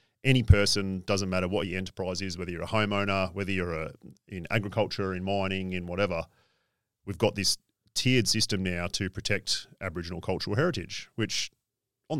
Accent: Australian